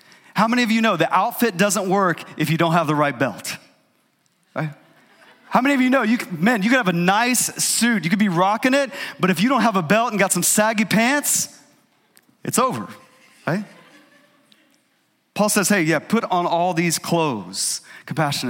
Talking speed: 195 wpm